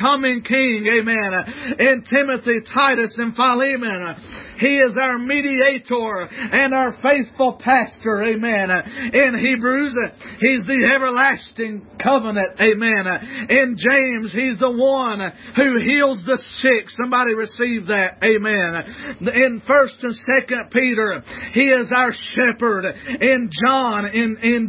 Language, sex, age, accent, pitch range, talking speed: English, male, 40-59, American, 230-275 Hz, 120 wpm